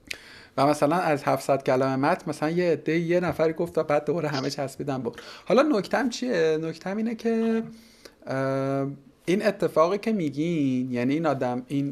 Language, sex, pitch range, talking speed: Persian, male, 135-180 Hz, 155 wpm